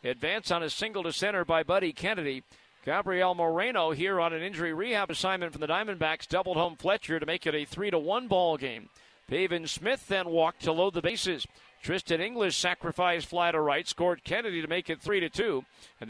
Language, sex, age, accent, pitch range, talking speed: English, male, 50-69, American, 170-230 Hz, 205 wpm